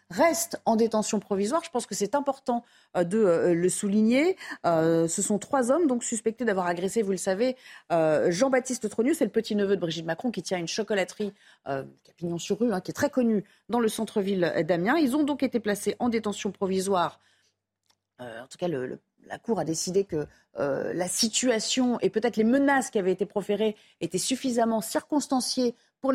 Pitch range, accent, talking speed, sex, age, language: 190-250 Hz, French, 190 wpm, female, 40-59, French